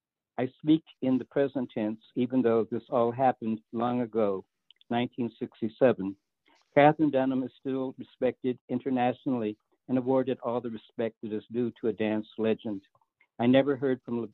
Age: 60-79